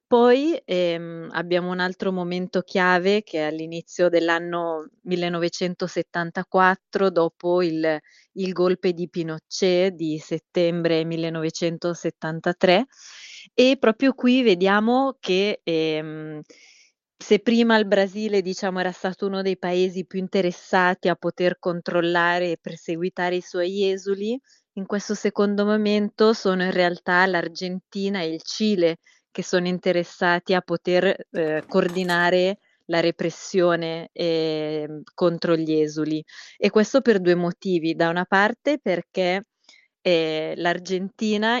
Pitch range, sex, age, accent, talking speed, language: 170-195 Hz, female, 20-39, native, 120 wpm, Italian